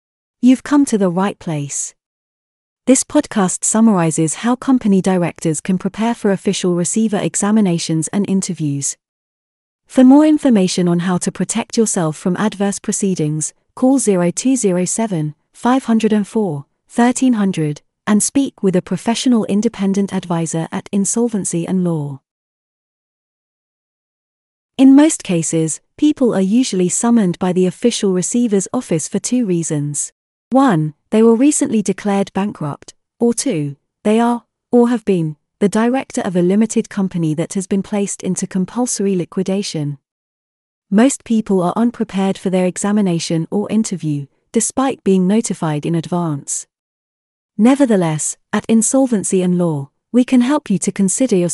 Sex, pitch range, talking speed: female, 175-230 Hz, 130 wpm